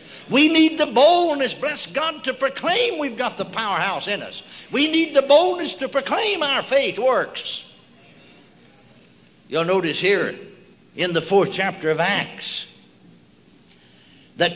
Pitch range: 175-270 Hz